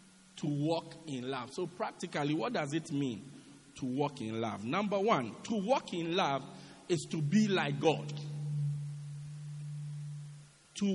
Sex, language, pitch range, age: male, English, 145-190 Hz, 50-69